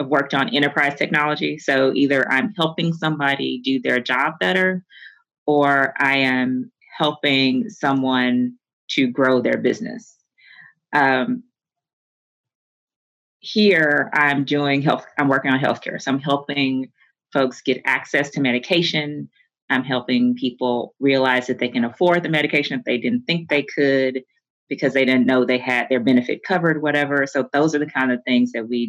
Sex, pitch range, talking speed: female, 125-150 Hz, 155 wpm